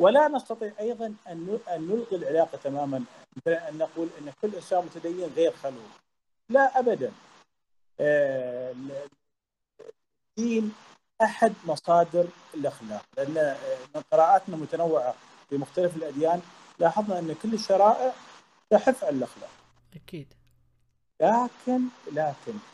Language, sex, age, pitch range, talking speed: Arabic, male, 40-59, 150-210 Hz, 105 wpm